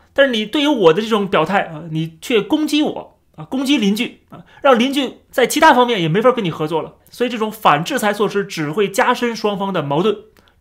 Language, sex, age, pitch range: Chinese, male, 30-49, 160-230 Hz